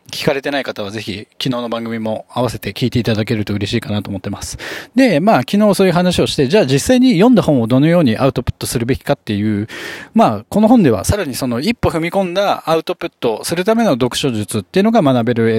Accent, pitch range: native, 115-180 Hz